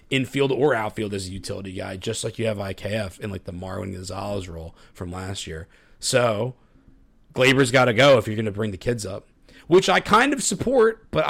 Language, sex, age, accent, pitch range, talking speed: English, male, 30-49, American, 100-125 Hz, 210 wpm